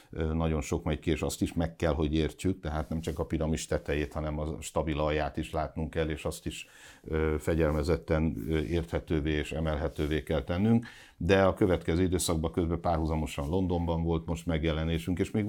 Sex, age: male, 60-79